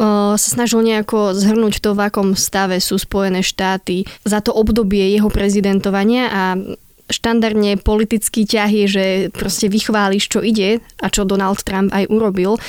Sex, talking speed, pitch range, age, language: female, 150 wpm, 195-220 Hz, 20-39, Slovak